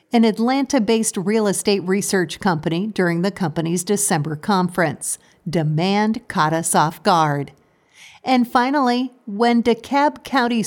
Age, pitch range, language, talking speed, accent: 50-69, 170-210 Hz, English, 120 wpm, American